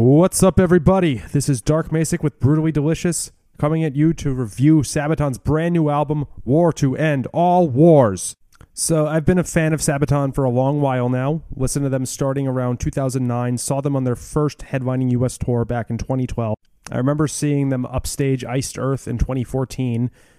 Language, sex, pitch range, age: English, male, 120-150 Hz, 30-49